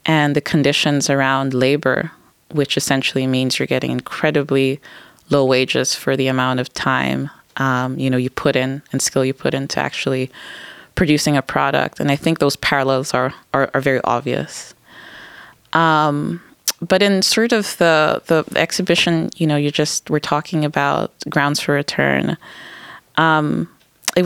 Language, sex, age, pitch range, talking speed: English, female, 20-39, 135-155 Hz, 155 wpm